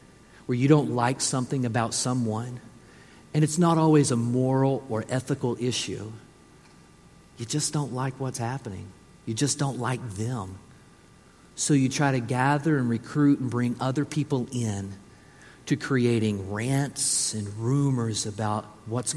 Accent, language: American, English